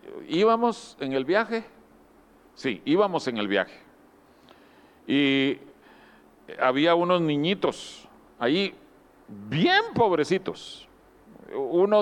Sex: male